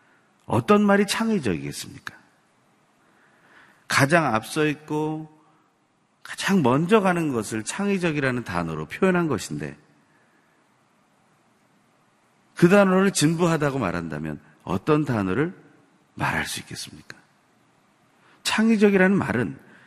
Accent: native